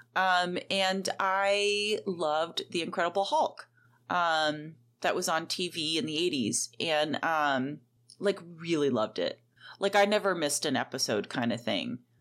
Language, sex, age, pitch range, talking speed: English, female, 30-49, 160-205 Hz, 145 wpm